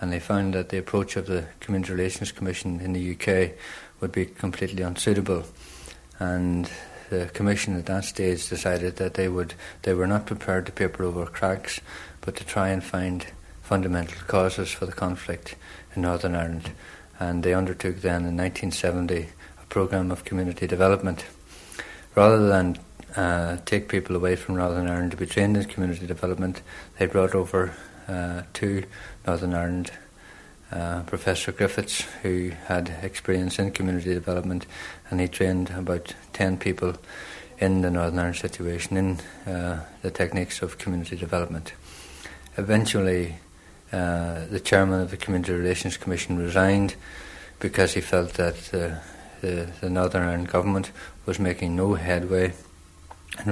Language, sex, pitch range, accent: English, male, 85-95 Hz, Irish